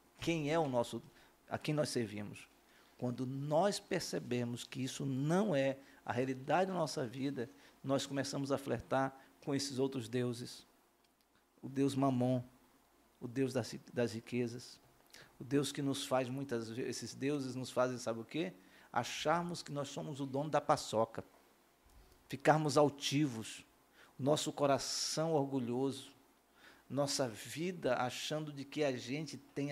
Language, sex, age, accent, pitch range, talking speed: Portuguese, male, 50-69, Brazilian, 125-145 Hz, 145 wpm